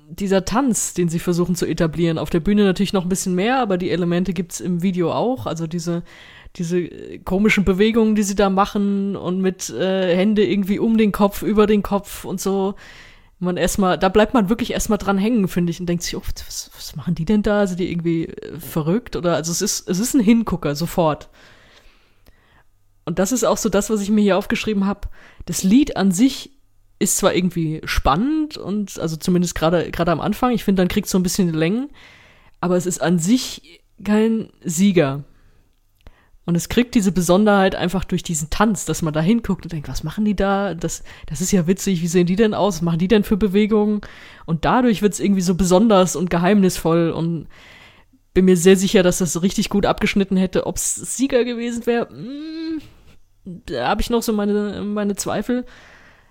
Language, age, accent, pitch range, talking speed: German, 20-39, German, 170-210 Hz, 205 wpm